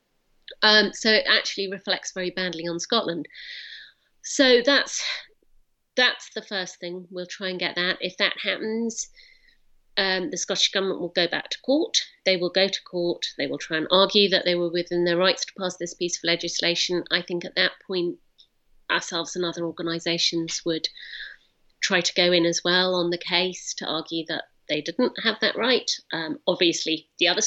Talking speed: 185 wpm